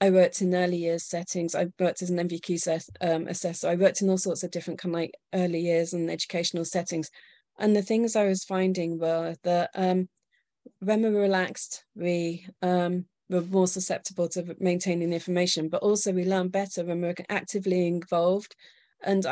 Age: 30-49